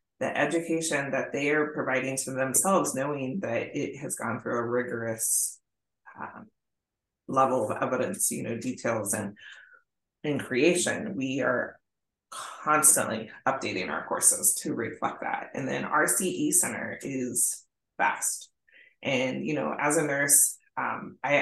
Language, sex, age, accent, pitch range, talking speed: English, female, 20-39, American, 125-165 Hz, 135 wpm